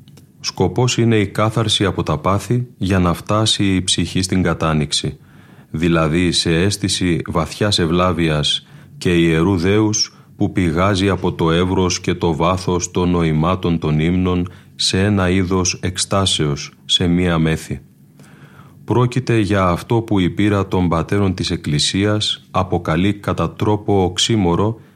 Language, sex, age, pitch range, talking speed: Greek, male, 30-49, 85-105 Hz, 130 wpm